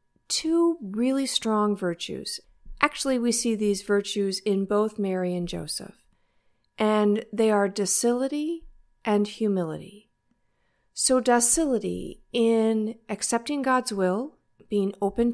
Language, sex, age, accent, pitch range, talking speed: English, female, 50-69, American, 195-245 Hz, 110 wpm